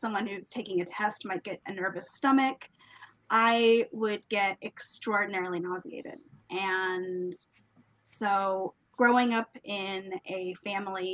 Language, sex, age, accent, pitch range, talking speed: English, female, 20-39, American, 175-205 Hz, 120 wpm